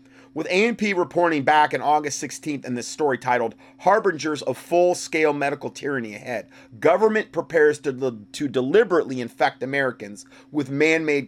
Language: English